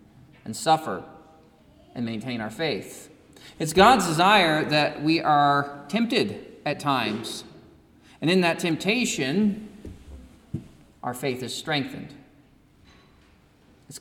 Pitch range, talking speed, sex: 135-185 Hz, 105 wpm, male